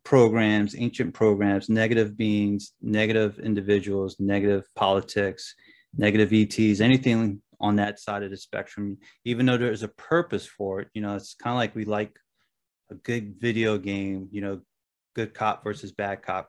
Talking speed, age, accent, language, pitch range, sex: 165 wpm, 30-49, American, English, 100-115 Hz, male